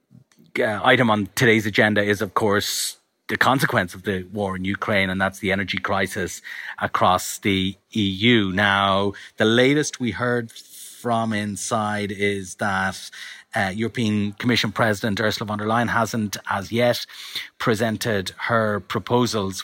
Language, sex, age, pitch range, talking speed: English, male, 30-49, 105-125 Hz, 140 wpm